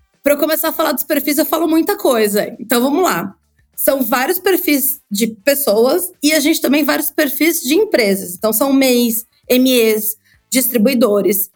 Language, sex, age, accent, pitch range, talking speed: Portuguese, female, 20-39, Brazilian, 235-300 Hz, 165 wpm